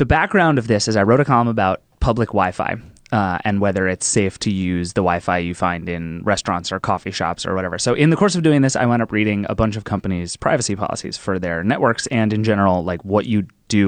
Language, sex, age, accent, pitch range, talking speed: English, male, 20-39, American, 95-125 Hz, 245 wpm